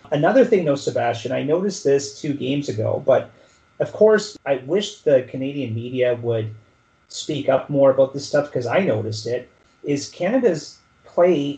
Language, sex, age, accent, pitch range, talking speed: English, male, 30-49, American, 130-160 Hz, 165 wpm